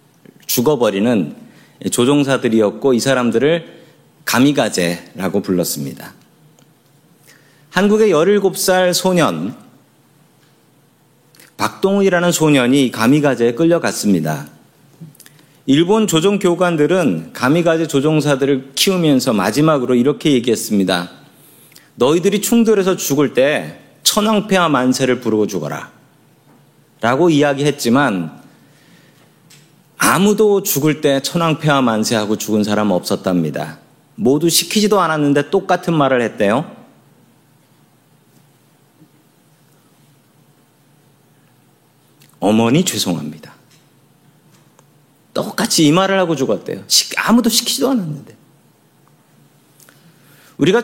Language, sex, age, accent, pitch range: Korean, male, 40-59, native, 125-180 Hz